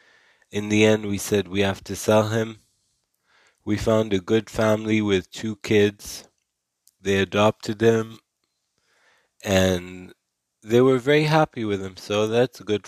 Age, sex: 20-39, male